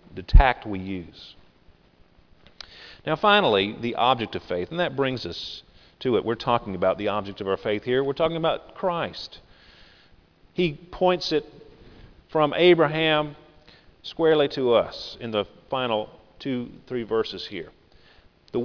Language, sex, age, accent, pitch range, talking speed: English, male, 40-59, American, 105-170 Hz, 145 wpm